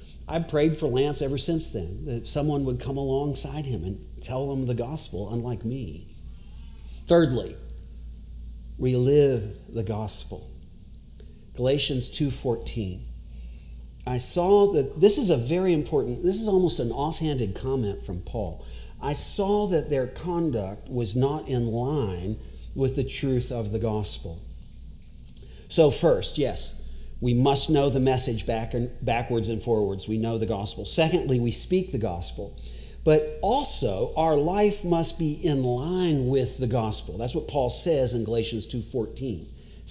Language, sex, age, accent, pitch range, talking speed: English, male, 50-69, American, 105-150 Hz, 145 wpm